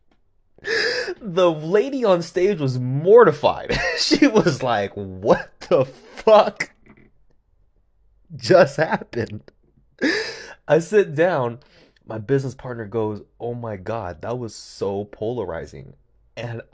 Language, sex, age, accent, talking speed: English, male, 20-39, American, 105 wpm